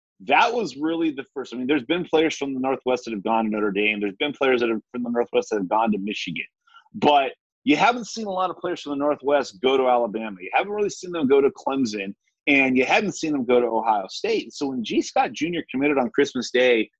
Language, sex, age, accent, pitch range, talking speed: English, male, 30-49, American, 125-205 Hz, 250 wpm